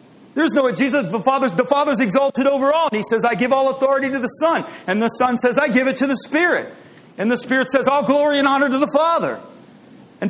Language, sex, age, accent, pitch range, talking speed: English, male, 40-59, American, 240-305 Hz, 240 wpm